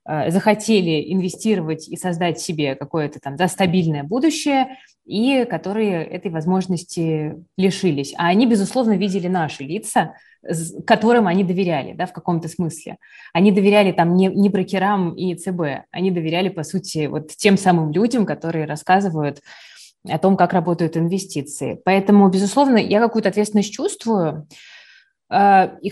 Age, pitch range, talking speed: 20-39, 175-220 Hz, 135 wpm